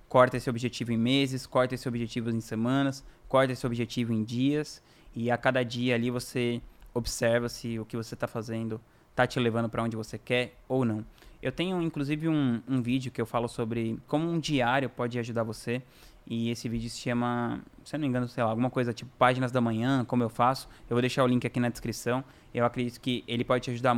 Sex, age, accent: male, 20-39, Brazilian